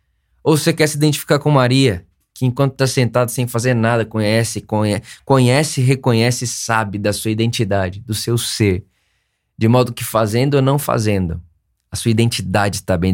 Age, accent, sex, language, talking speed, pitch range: 20-39, Brazilian, male, Portuguese, 170 wpm, 100-130 Hz